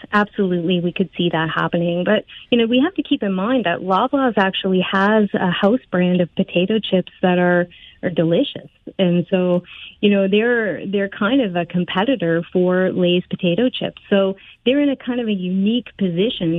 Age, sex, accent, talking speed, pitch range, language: 30-49, female, American, 190 wpm, 175-215 Hz, English